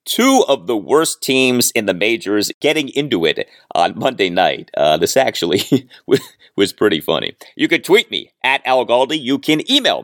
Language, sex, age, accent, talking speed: English, male, 40-59, American, 175 wpm